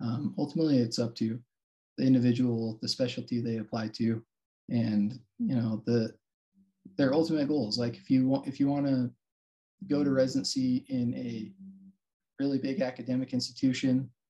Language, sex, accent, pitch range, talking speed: English, male, American, 115-130 Hz, 145 wpm